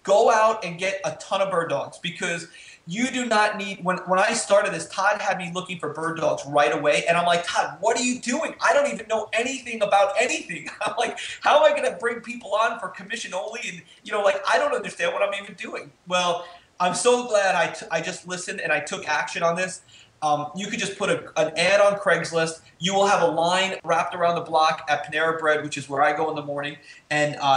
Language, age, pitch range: English, 30-49, 150-190 Hz